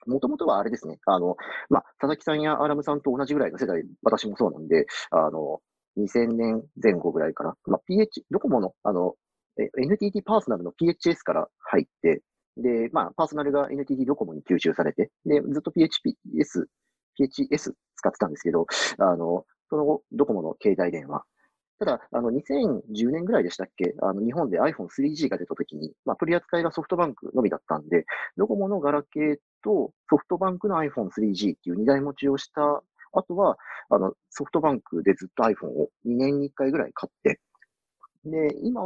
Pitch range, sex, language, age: 135-190 Hz, male, Japanese, 40-59